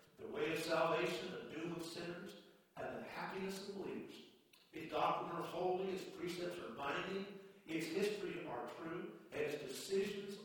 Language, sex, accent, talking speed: English, male, American, 160 wpm